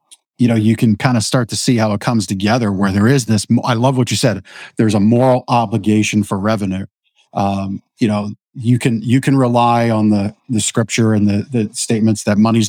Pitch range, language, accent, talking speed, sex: 105-125 Hz, English, American, 220 wpm, male